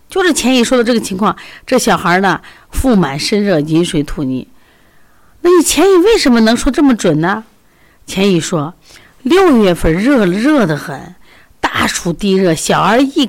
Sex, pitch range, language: female, 165-270 Hz, Chinese